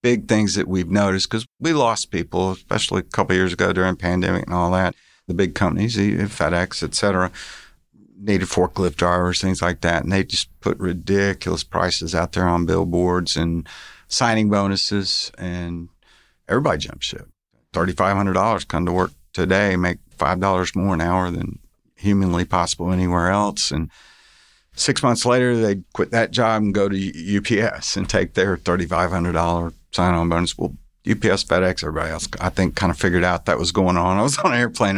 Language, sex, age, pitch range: English, male, 50-69, 90-100 Hz